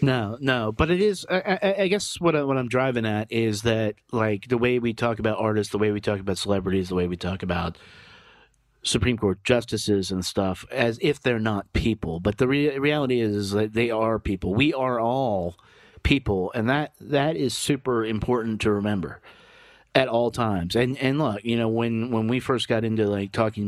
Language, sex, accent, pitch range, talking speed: English, male, American, 105-130 Hz, 210 wpm